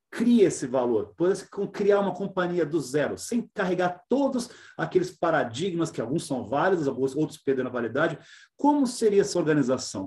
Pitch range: 150-190 Hz